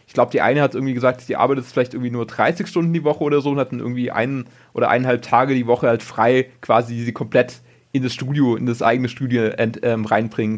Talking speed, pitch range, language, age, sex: 245 wpm, 120-140 Hz, German, 30-49, male